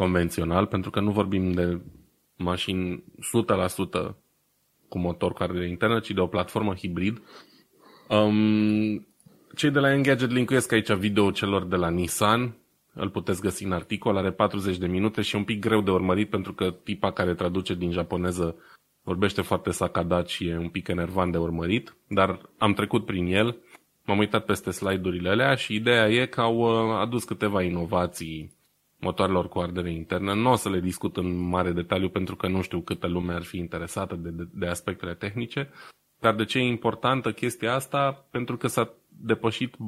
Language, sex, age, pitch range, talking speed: Romanian, male, 20-39, 90-110 Hz, 175 wpm